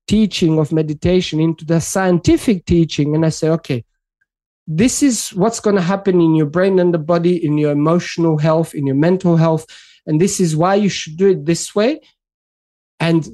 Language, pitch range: English, 170-225 Hz